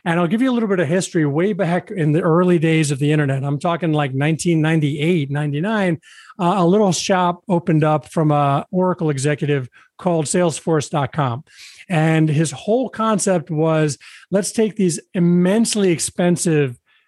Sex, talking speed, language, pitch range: male, 160 wpm, English, 145-180 Hz